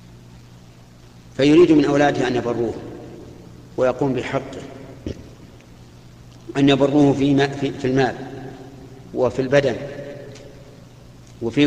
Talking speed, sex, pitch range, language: 75 wpm, male, 115-140 Hz, Arabic